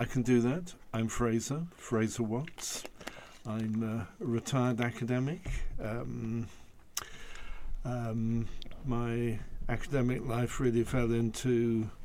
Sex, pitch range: male, 110-120 Hz